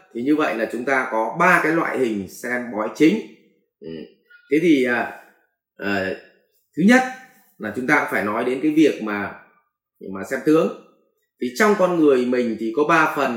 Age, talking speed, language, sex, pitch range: 20-39, 175 wpm, English, male, 115-195 Hz